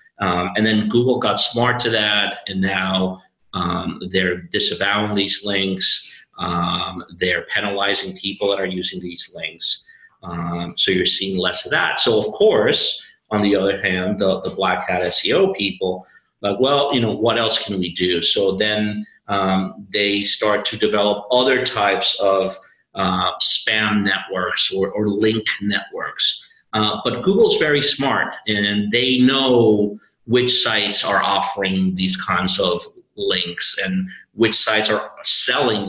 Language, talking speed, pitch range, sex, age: English, 150 wpm, 100-125 Hz, male, 40-59